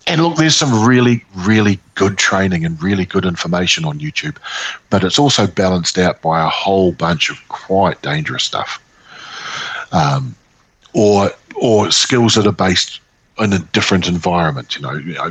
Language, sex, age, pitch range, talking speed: English, male, 50-69, 95-130 Hz, 160 wpm